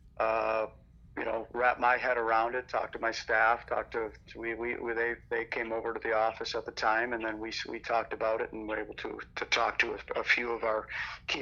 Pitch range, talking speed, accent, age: 110-120 Hz, 250 wpm, American, 40-59